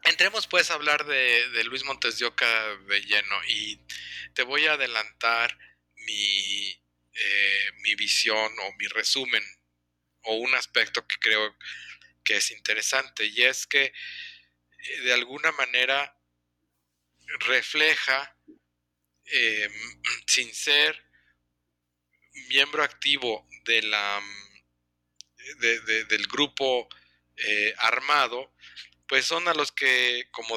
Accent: Mexican